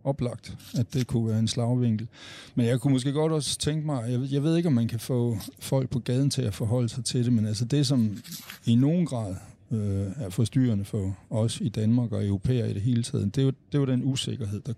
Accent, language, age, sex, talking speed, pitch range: native, Danish, 60-79, male, 235 wpm, 105-125 Hz